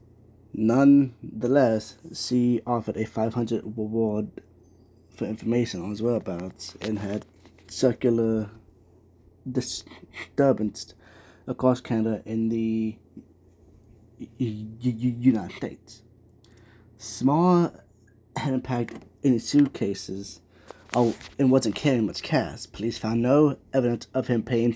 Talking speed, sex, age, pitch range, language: 100 wpm, male, 20-39, 105-125 Hz, English